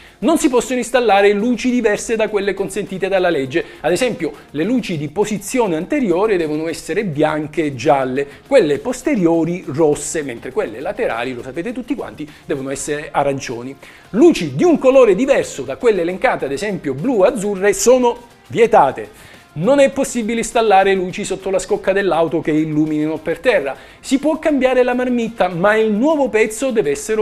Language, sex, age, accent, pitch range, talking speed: Italian, male, 40-59, native, 155-240 Hz, 165 wpm